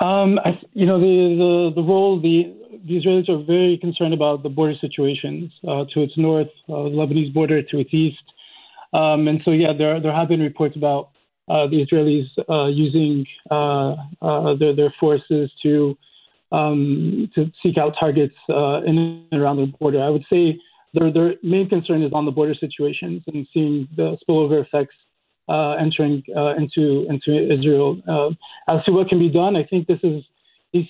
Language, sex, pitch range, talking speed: English, male, 150-165 Hz, 185 wpm